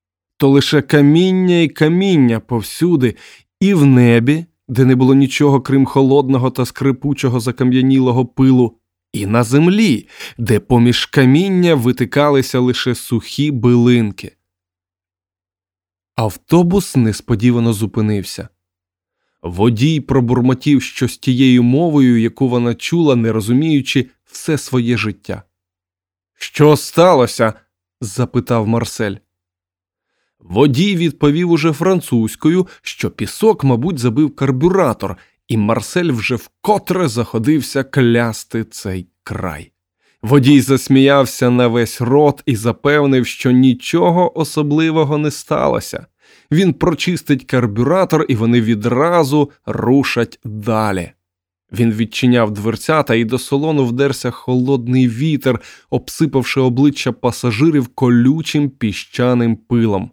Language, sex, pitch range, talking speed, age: Ukrainian, male, 115-145 Hz, 105 wpm, 20-39